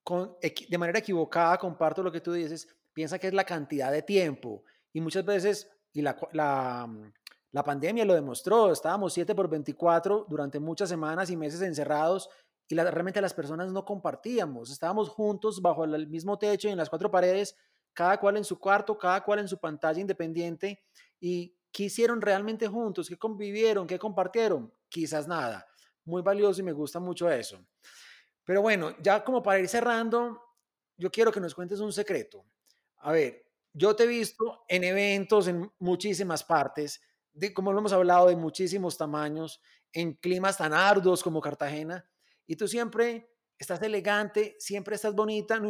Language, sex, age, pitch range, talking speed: Spanish, male, 30-49, 170-210 Hz, 170 wpm